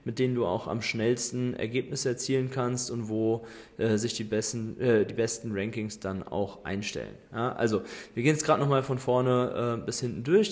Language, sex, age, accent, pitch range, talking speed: German, male, 20-39, German, 115-135 Hz, 200 wpm